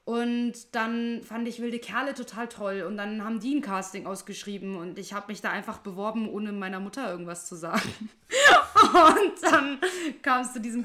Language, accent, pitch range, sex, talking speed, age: English, German, 185-235 Hz, female, 190 wpm, 20-39